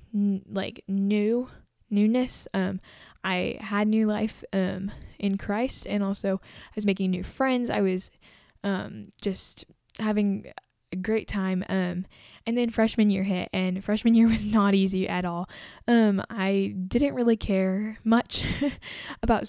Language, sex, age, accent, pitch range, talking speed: English, female, 10-29, American, 190-215 Hz, 145 wpm